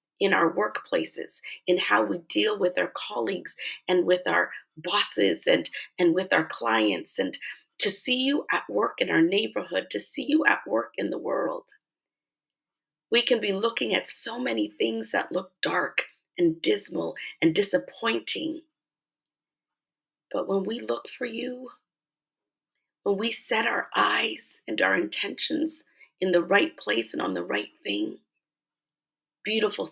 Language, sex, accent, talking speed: English, female, American, 150 wpm